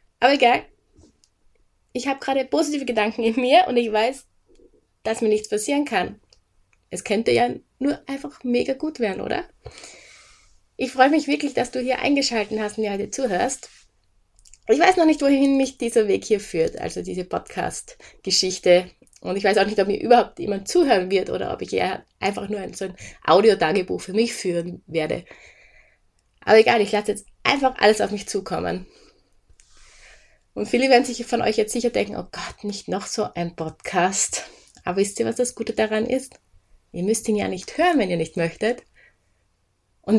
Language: German